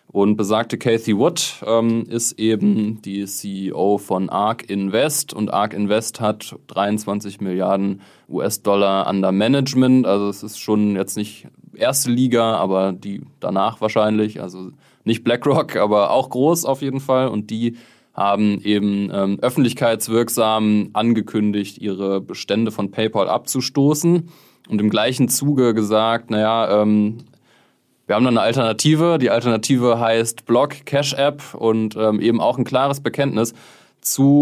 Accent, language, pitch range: German, German, 105-125 Hz